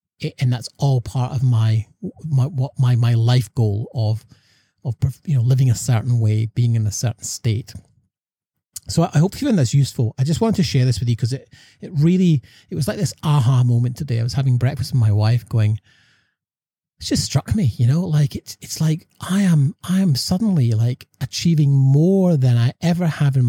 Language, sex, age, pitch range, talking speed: English, male, 30-49, 115-140 Hz, 215 wpm